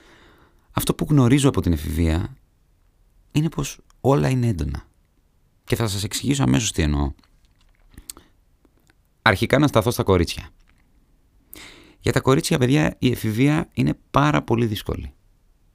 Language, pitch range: Greek, 85-130 Hz